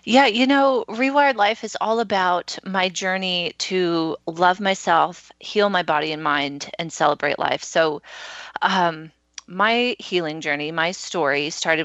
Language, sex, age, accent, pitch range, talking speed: English, female, 30-49, American, 155-195 Hz, 145 wpm